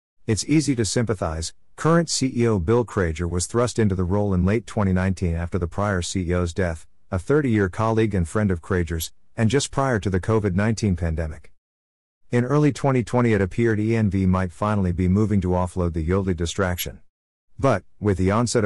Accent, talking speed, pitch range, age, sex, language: American, 175 wpm, 90-110 Hz, 50-69, male, English